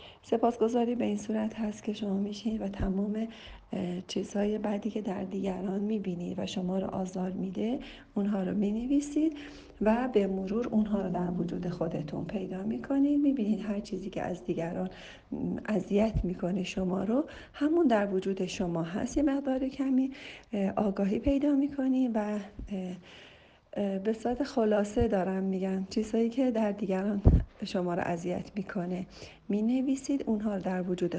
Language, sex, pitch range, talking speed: Persian, female, 190-245 Hz, 140 wpm